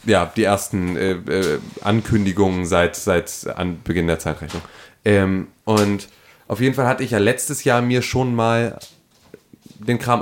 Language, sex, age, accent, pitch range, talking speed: German, male, 30-49, German, 95-110 Hz, 160 wpm